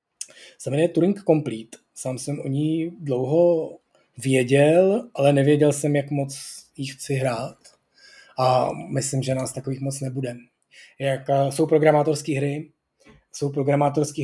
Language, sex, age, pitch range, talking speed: Czech, male, 20-39, 135-155 Hz, 125 wpm